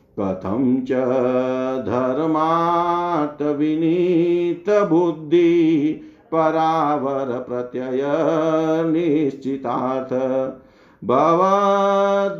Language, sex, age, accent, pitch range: Hindi, male, 50-69, native, 135-180 Hz